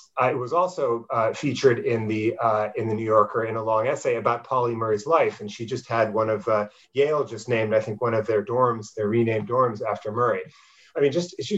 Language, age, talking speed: English, 30-49, 240 wpm